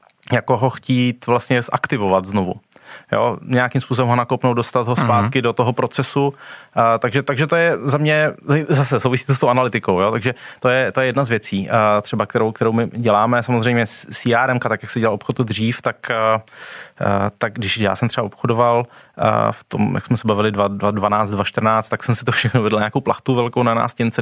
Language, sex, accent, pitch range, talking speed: Czech, male, native, 105-125 Hz, 190 wpm